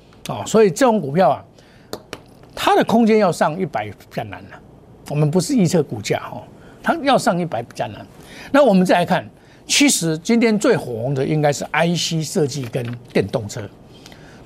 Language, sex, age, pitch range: Chinese, male, 50-69, 145-205 Hz